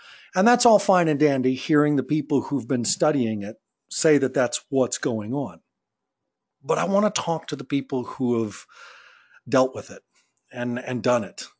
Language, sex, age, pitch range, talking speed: English, male, 50-69, 125-165 Hz, 180 wpm